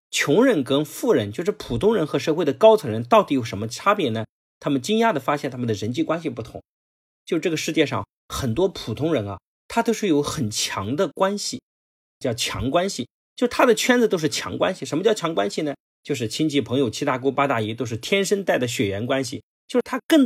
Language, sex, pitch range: Chinese, male, 115-180 Hz